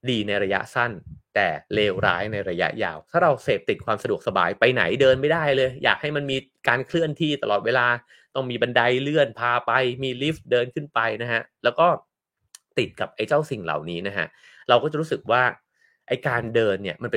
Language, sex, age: English, male, 30-49